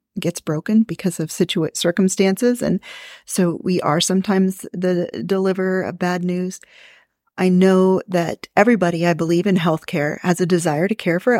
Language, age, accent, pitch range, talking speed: English, 40-59, American, 170-190 Hz, 160 wpm